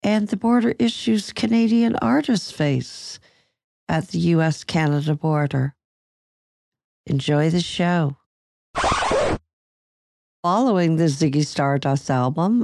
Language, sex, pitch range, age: English, female, 145-185 Hz, 60-79